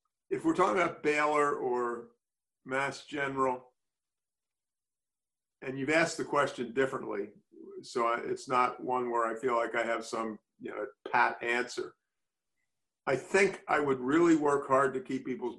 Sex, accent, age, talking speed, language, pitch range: male, American, 50-69, 155 wpm, English, 120-145 Hz